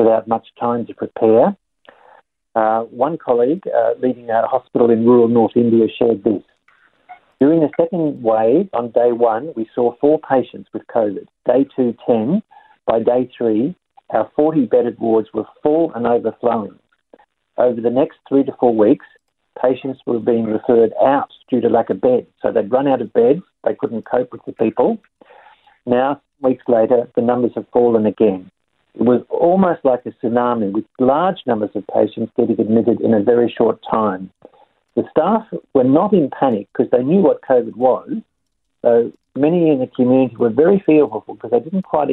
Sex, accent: male, Australian